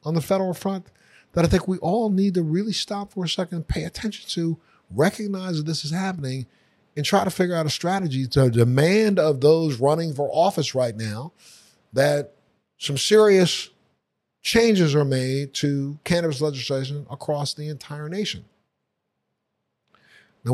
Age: 50-69